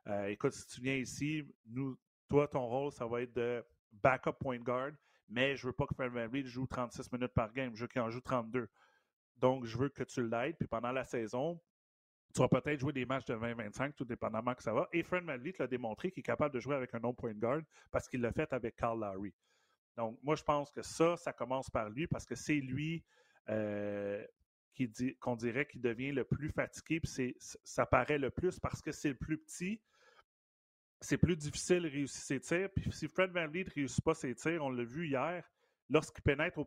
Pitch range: 120-145 Hz